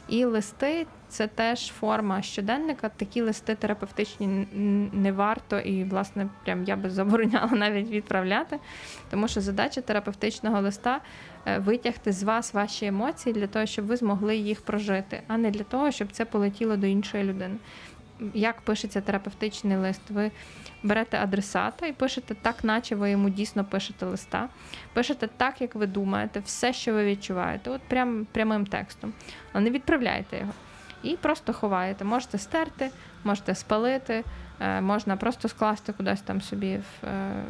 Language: Ukrainian